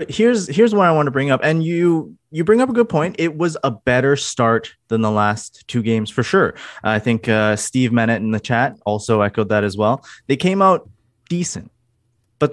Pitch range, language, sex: 110-155 Hz, English, male